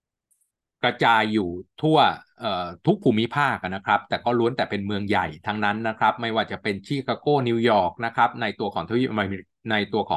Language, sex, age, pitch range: Thai, male, 20-39, 100-130 Hz